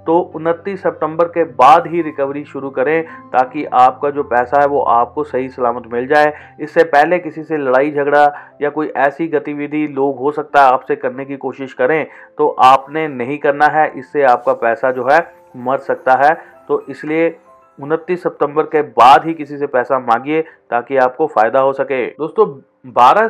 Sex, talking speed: male, 180 wpm